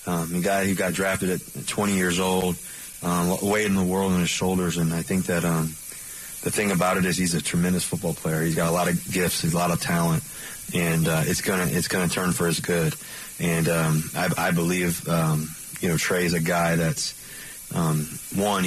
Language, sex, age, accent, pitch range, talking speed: English, male, 30-49, American, 85-90 Hz, 230 wpm